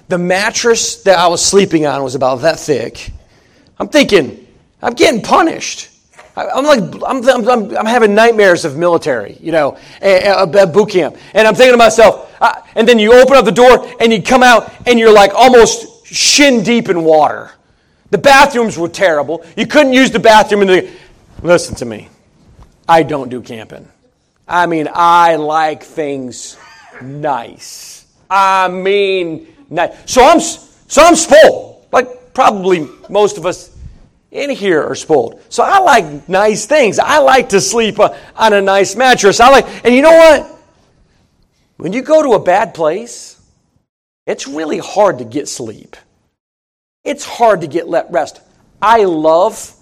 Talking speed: 165 wpm